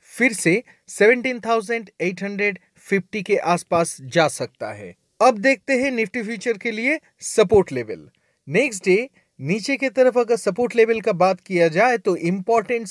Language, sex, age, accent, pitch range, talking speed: Hindi, male, 30-49, native, 180-235 Hz, 160 wpm